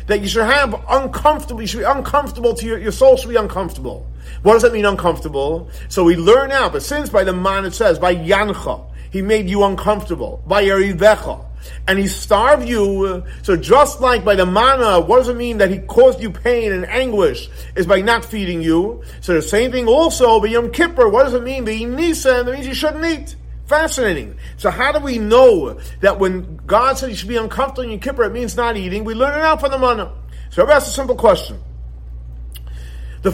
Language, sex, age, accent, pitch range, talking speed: English, male, 40-59, American, 155-245 Hz, 215 wpm